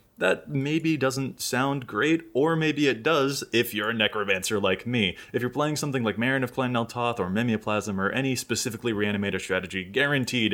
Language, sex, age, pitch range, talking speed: English, male, 20-39, 100-130 Hz, 180 wpm